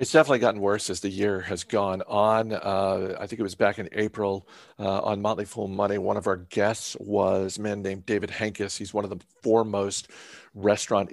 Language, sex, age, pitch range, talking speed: English, male, 50-69, 95-105 Hz, 210 wpm